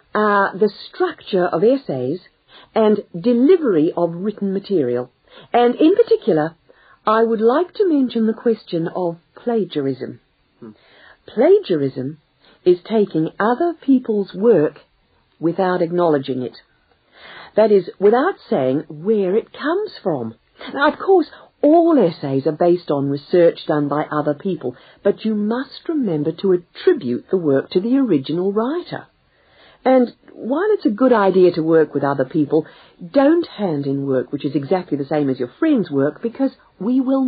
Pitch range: 155-250 Hz